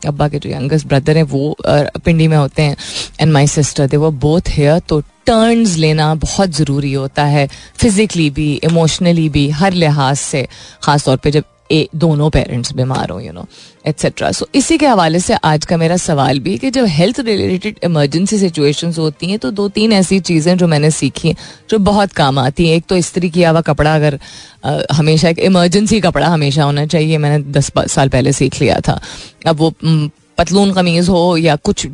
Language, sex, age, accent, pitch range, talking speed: Hindi, female, 30-49, native, 145-185 Hz, 195 wpm